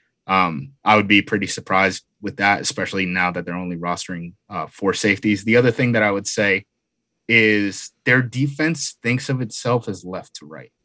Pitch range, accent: 100-125 Hz, American